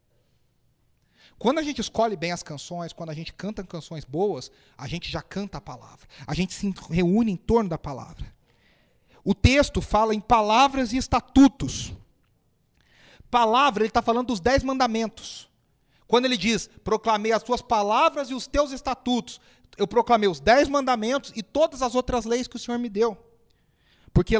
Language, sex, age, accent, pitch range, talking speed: Portuguese, male, 40-59, Brazilian, 165-240 Hz, 170 wpm